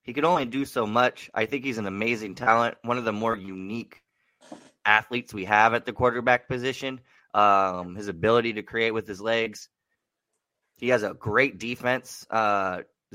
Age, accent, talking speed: 20-39, American, 175 wpm